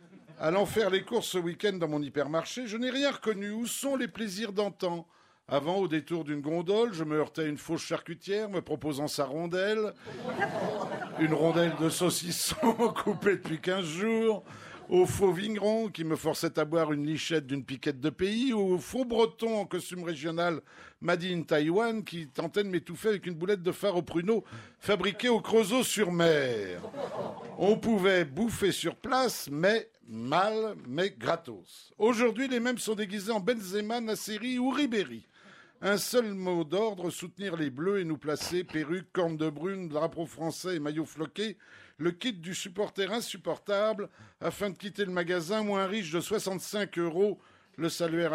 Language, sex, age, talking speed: French, male, 60-79, 170 wpm